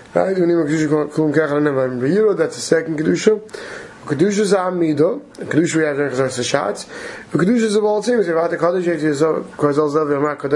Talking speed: 55 wpm